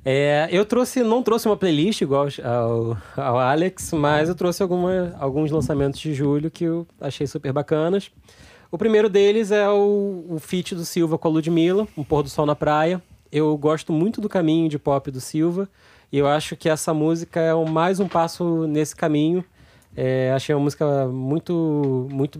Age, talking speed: 20-39, 190 wpm